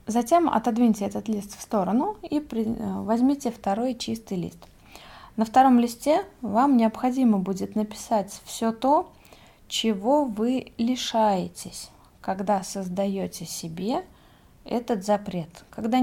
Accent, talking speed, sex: native, 110 wpm, female